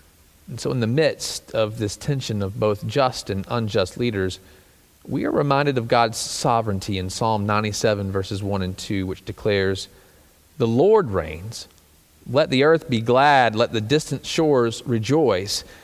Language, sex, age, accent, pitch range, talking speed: English, male, 40-59, American, 105-145 Hz, 160 wpm